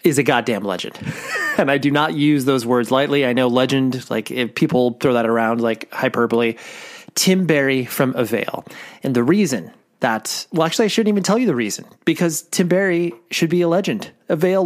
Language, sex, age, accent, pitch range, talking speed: English, male, 30-49, American, 125-155 Hz, 195 wpm